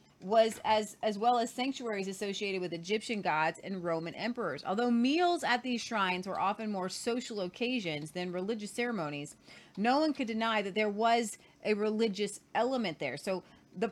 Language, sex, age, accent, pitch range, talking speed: English, female, 30-49, American, 185-240 Hz, 170 wpm